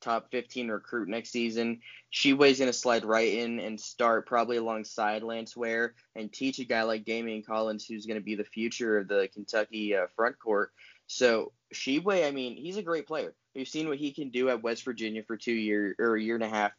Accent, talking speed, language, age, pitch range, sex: American, 215 wpm, English, 10-29, 110-130 Hz, male